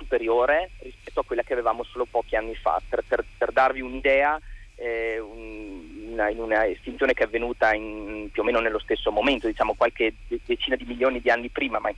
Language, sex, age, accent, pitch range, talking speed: Italian, male, 30-49, native, 115-150 Hz, 200 wpm